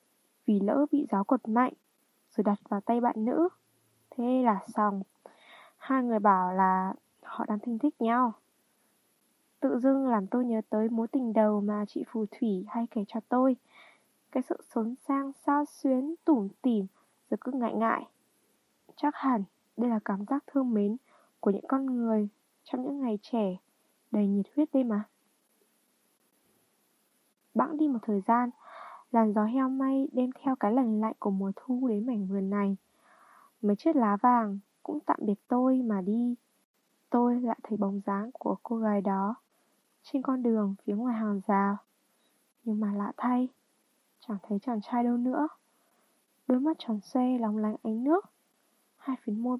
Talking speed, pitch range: 170 wpm, 210-260 Hz